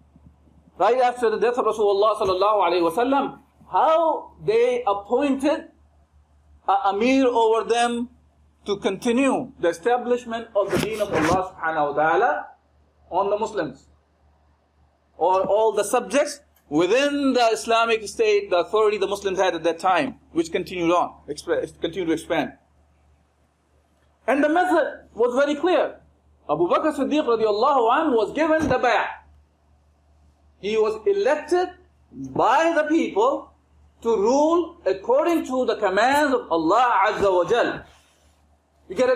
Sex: male